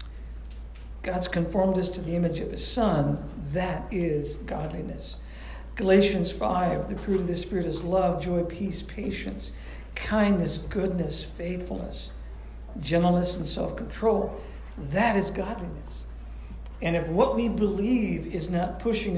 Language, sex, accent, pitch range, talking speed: English, male, American, 160-205 Hz, 130 wpm